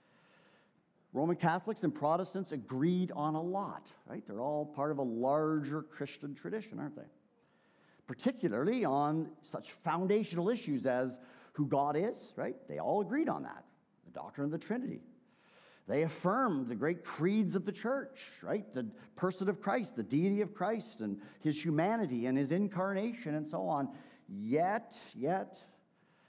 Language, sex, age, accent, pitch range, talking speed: English, male, 50-69, American, 140-200 Hz, 155 wpm